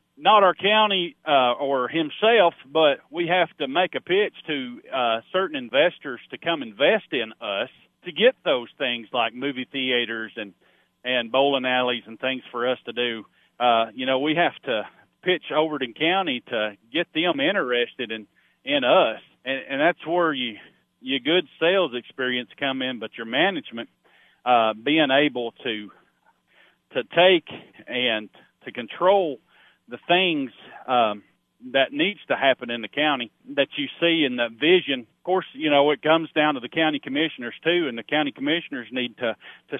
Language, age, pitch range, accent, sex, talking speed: English, 40-59, 125-175 Hz, American, male, 170 wpm